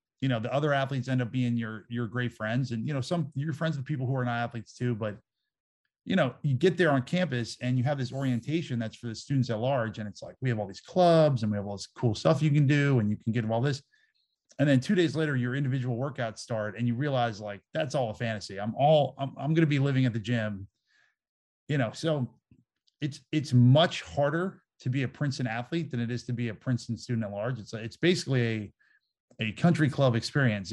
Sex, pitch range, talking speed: male, 115-135 Hz, 245 wpm